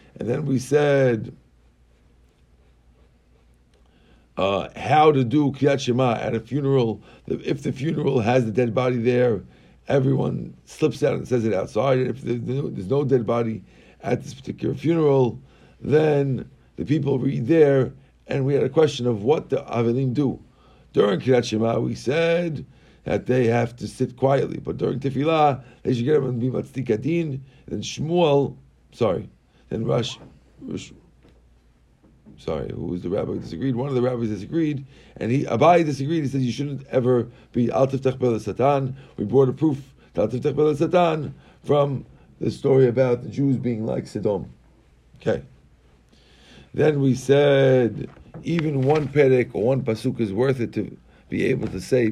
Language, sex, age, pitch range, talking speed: English, male, 50-69, 115-140 Hz, 160 wpm